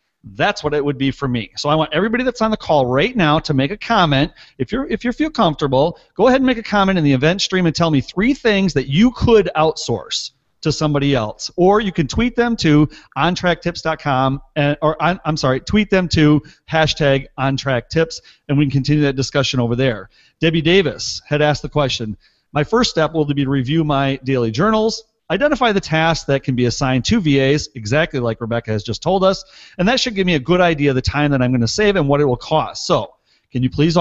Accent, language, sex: American, English, male